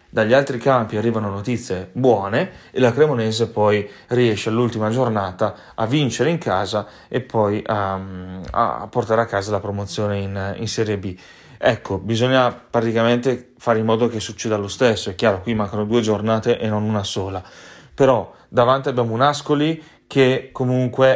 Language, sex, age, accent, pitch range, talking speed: Italian, male, 30-49, native, 110-125 Hz, 160 wpm